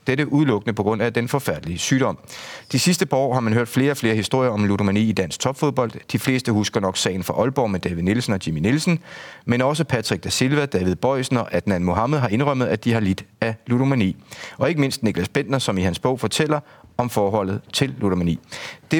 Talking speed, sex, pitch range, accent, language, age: 220 wpm, male, 105-135 Hz, native, Danish, 30-49